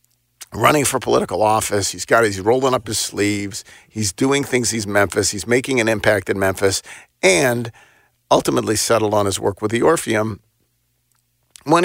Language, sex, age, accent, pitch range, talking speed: English, male, 50-69, American, 100-130 Hz, 160 wpm